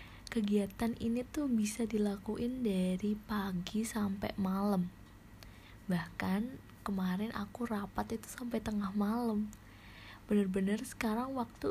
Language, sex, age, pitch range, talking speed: Indonesian, female, 20-39, 175-220 Hz, 100 wpm